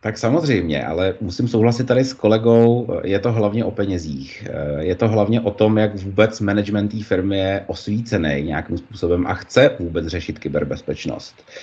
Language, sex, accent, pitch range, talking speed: Czech, male, native, 90-105 Hz, 165 wpm